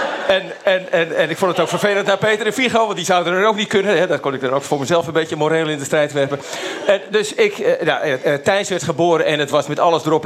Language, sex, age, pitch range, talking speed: Dutch, male, 40-59, 150-200 Hz, 280 wpm